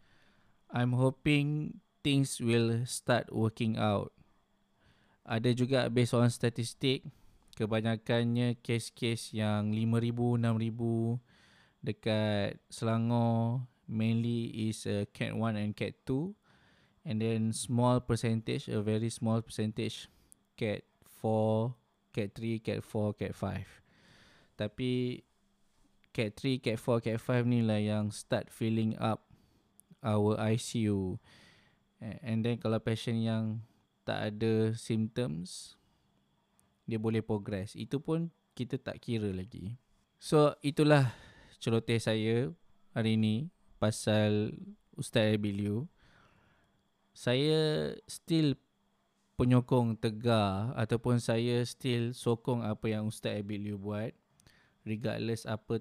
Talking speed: 105 wpm